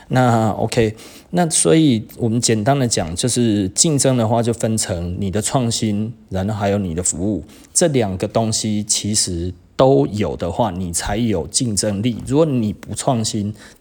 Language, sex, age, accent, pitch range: Chinese, male, 30-49, native, 100-130 Hz